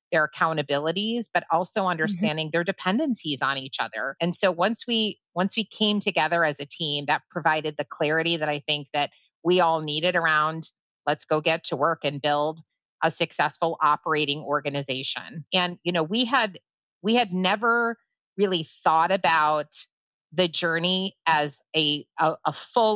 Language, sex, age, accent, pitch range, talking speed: English, female, 30-49, American, 150-185 Hz, 160 wpm